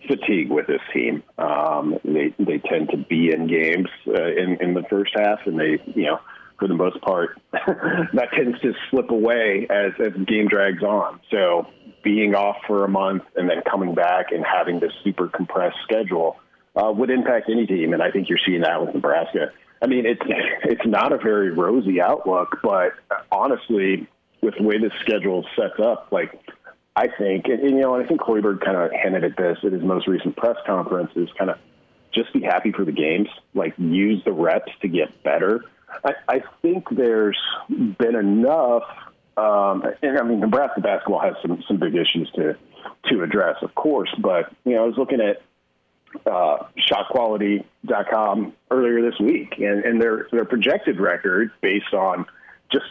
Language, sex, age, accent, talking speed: English, male, 40-59, American, 185 wpm